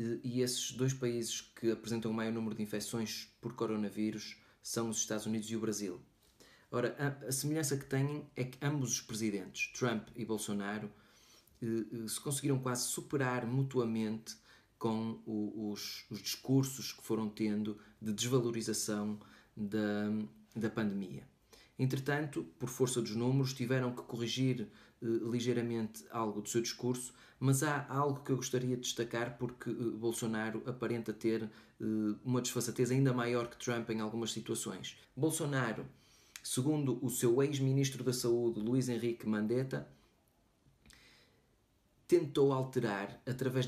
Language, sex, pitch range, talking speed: Portuguese, male, 110-125 Hz, 135 wpm